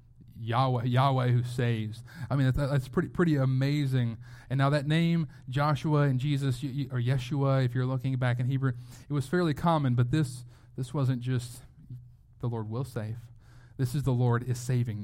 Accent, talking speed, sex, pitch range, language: American, 180 wpm, male, 120-145 Hz, English